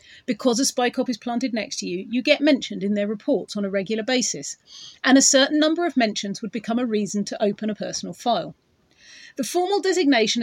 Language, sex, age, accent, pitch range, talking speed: English, female, 40-59, British, 210-275 Hz, 215 wpm